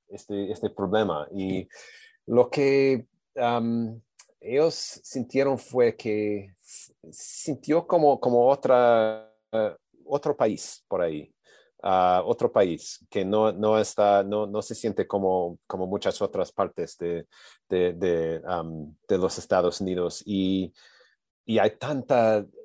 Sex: male